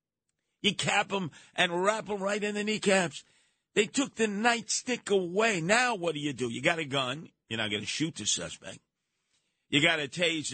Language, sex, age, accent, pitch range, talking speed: English, male, 50-69, American, 120-180 Hz, 200 wpm